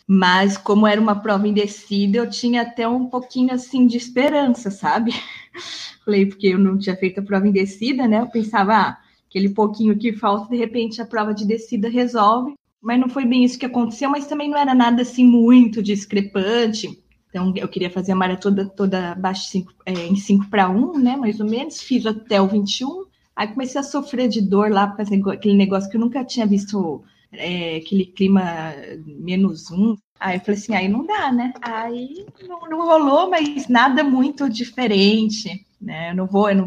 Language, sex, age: Portuguese, female, 20-39